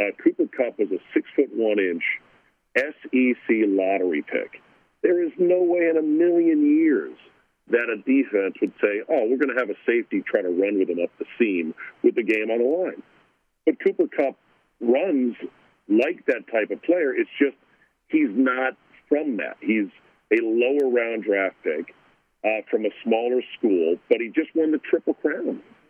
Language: English